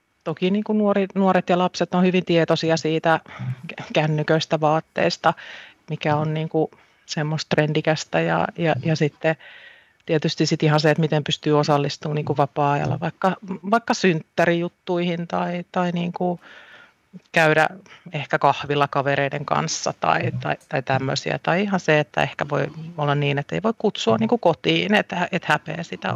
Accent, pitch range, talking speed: native, 150-185 Hz, 130 wpm